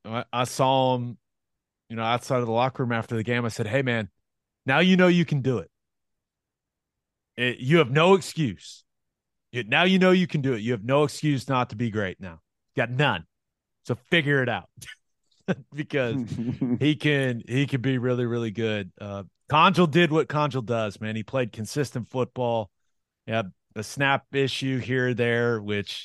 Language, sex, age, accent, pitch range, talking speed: English, male, 30-49, American, 115-150 Hz, 180 wpm